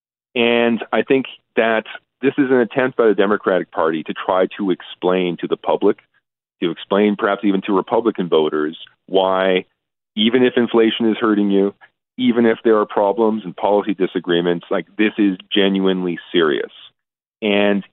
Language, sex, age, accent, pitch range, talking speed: English, male, 40-59, American, 90-110 Hz, 155 wpm